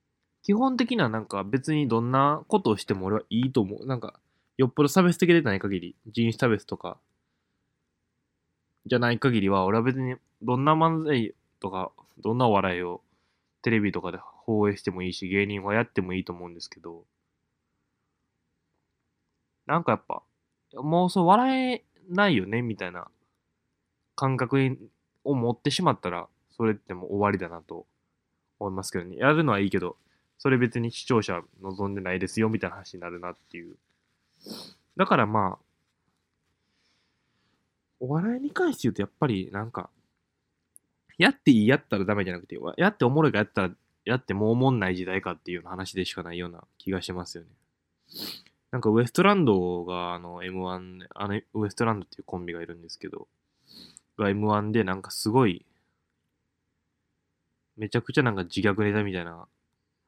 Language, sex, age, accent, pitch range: Japanese, male, 20-39, native, 90-130 Hz